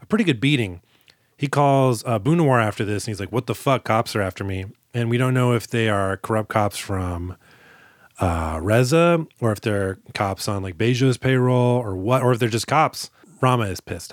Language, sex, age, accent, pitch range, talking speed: English, male, 30-49, American, 110-140 Hz, 210 wpm